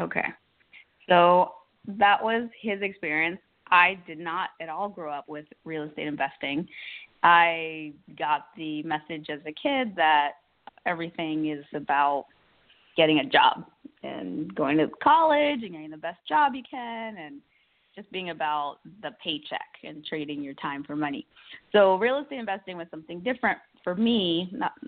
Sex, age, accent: female, 20-39, American